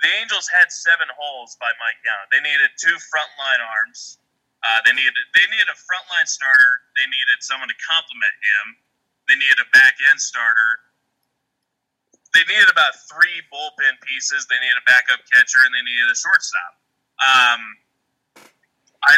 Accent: American